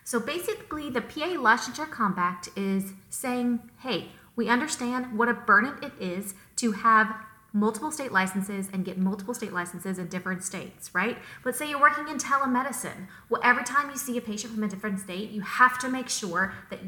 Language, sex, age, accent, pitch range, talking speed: English, female, 20-39, American, 200-255 Hz, 190 wpm